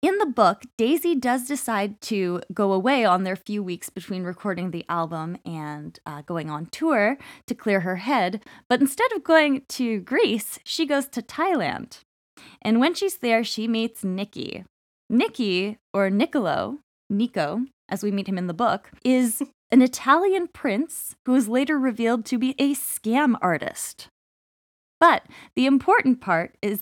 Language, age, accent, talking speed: English, 10-29, American, 160 wpm